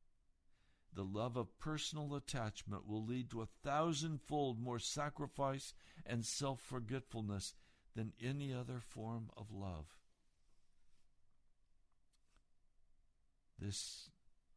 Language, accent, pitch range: English, American, 90-115 Hz